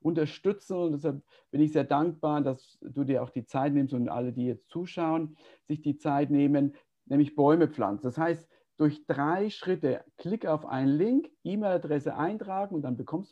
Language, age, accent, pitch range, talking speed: German, 50-69, German, 140-175 Hz, 180 wpm